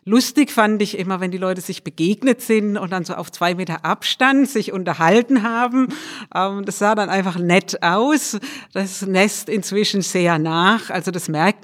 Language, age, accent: German, 50-69, German